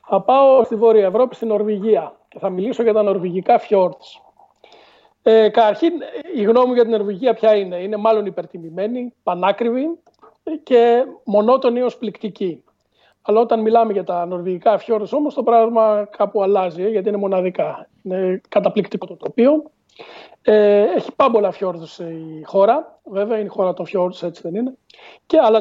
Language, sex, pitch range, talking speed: Greek, male, 190-230 Hz, 155 wpm